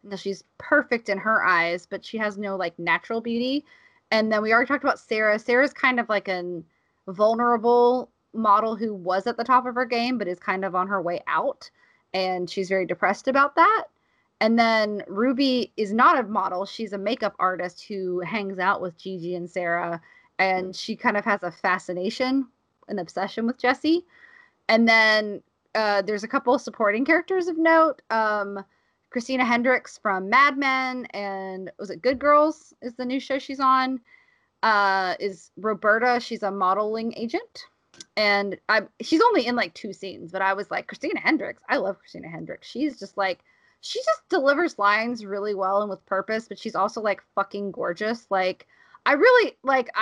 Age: 20-39